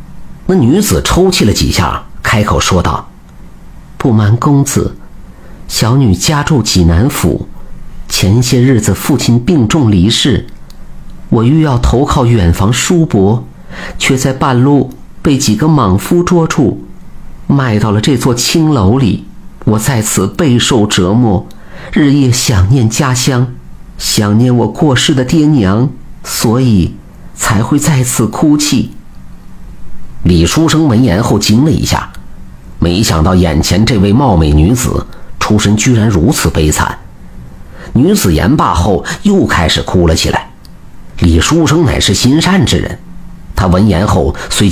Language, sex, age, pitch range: Chinese, male, 50-69, 90-130 Hz